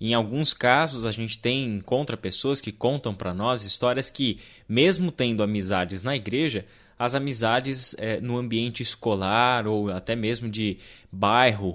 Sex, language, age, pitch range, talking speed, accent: male, Portuguese, 20-39, 110-135 Hz, 145 wpm, Brazilian